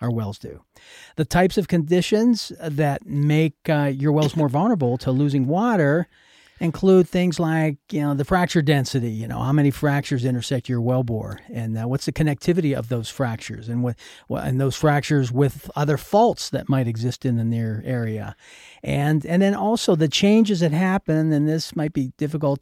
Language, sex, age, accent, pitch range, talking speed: English, male, 40-59, American, 120-155 Hz, 185 wpm